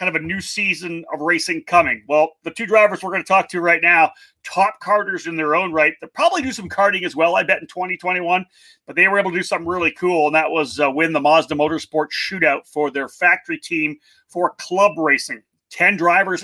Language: English